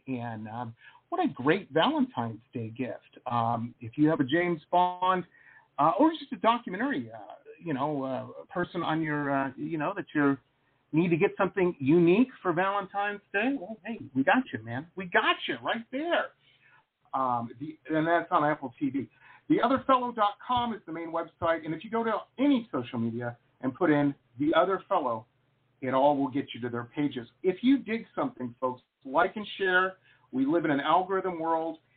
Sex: male